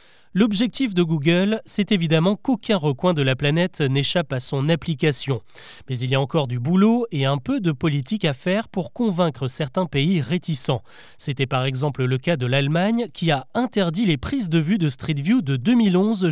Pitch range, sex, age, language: 145-200 Hz, male, 30-49, French